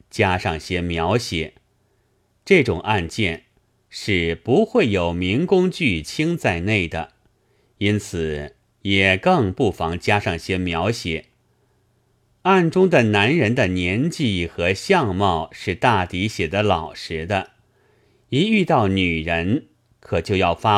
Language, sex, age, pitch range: Chinese, male, 30-49, 90-125 Hz